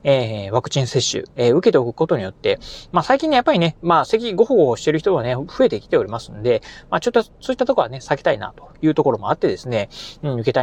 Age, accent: 30-49, native